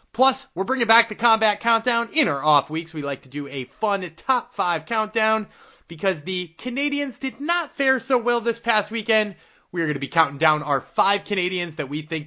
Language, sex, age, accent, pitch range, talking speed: English, male, 30-49, American, 155-225 Hz, 215 wpm